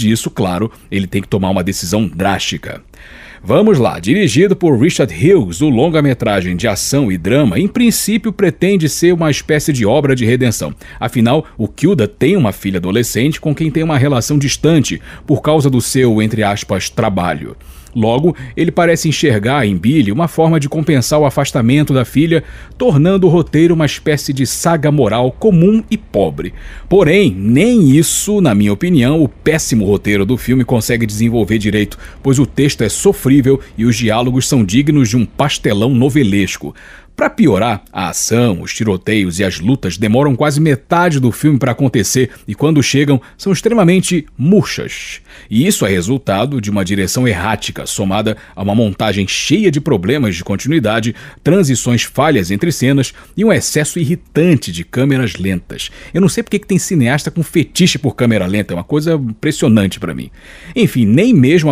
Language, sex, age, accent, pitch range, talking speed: Portuguese, male, 40-59, Brazilian, 105-155 Hz, 170 wpm